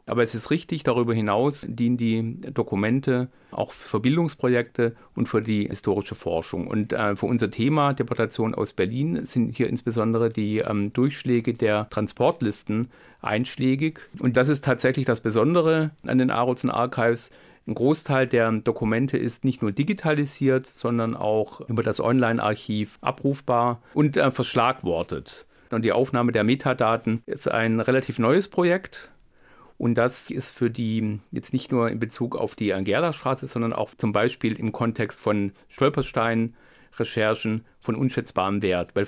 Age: 40-59